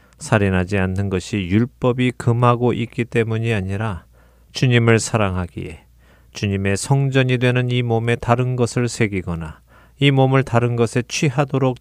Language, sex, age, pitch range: Korean, male, 40-59, 95-125 Hz